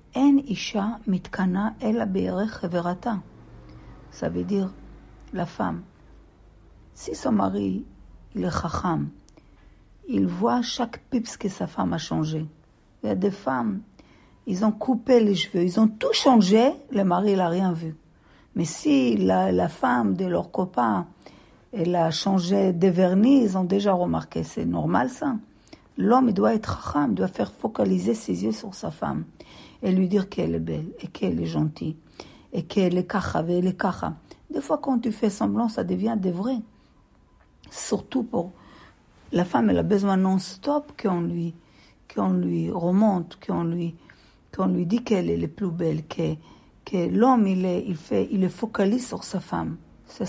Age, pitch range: 50-69, 165-220 Hz